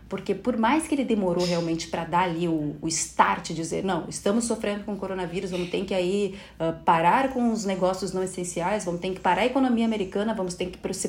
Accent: Brazilian